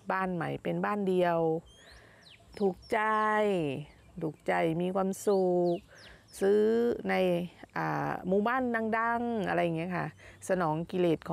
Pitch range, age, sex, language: 170-235 Hz, 30-49, female, Thai